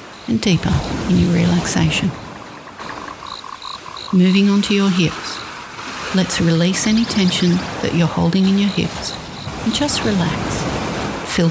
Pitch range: 175-210 Hz